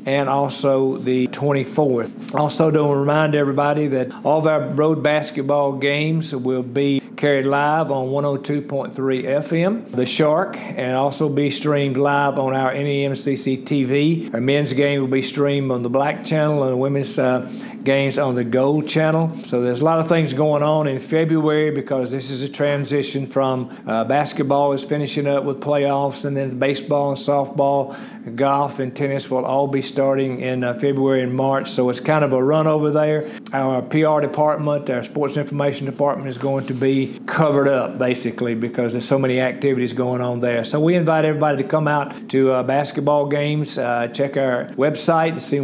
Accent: American